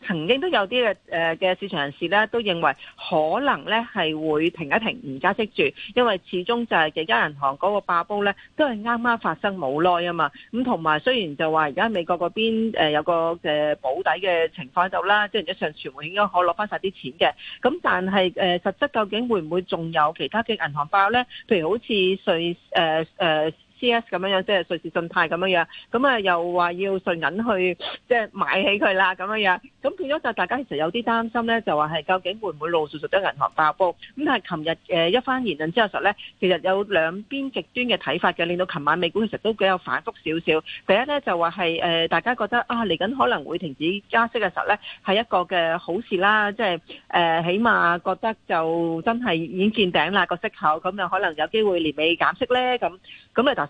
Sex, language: female, Chinese